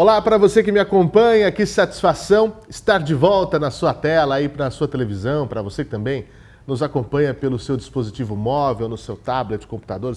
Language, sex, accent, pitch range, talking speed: Portuguese, male, Brazilian, 125-160 Hz, 185 wpm